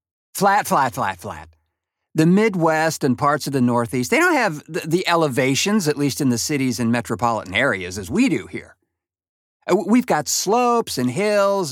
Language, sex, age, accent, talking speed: English, male, 50-69, American, 175 wpm